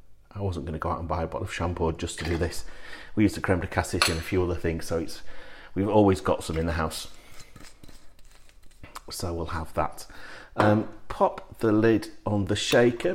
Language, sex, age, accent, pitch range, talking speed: English, male, 40-59, British, 85-110 Hz, 215 wpm